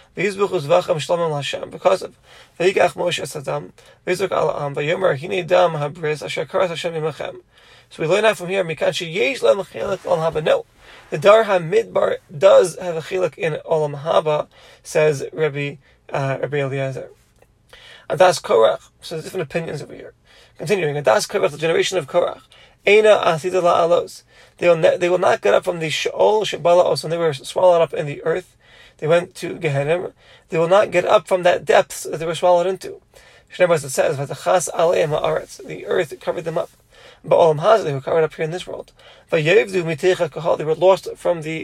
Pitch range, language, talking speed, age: 160-195 Hz, English, 150 wpm, 20-39